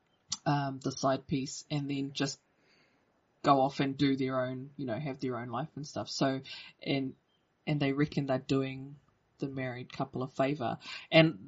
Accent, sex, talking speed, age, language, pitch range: Australian, female, 180 wpm, 20-39, English, 130-150 Hz